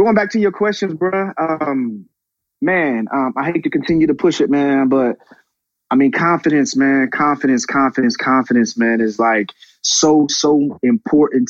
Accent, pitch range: American, 120-185 Hz